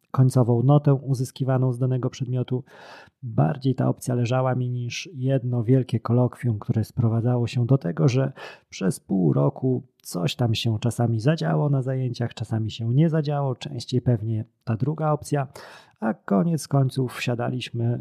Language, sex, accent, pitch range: Polish, male, native, 120-135 Hz